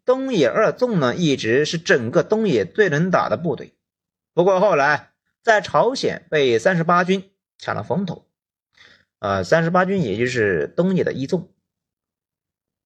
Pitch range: 155-215 Hz